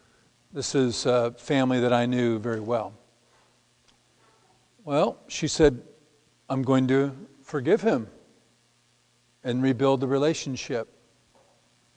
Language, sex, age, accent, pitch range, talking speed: English, male, 50-69, American, 120-140 Hz, 105 wpm